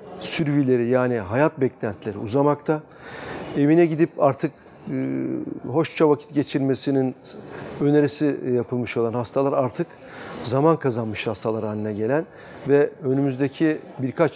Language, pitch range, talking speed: Turkish, 125-160 Hz, 100 wpm